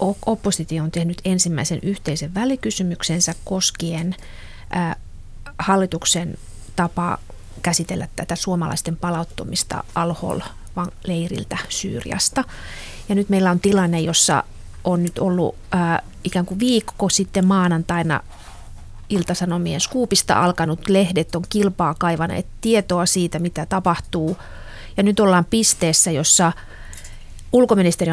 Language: Finnish